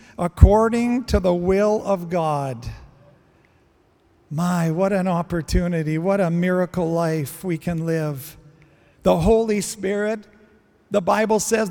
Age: 50-69